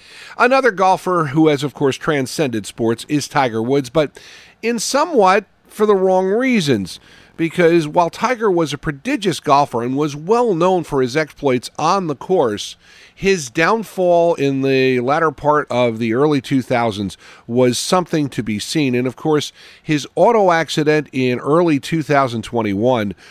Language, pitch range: English, 125-165 Hz